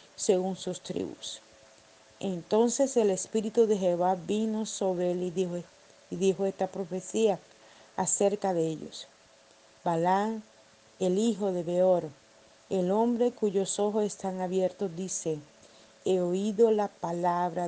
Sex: female